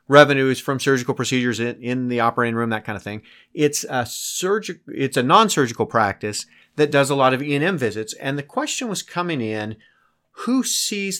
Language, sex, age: English, male, 30-49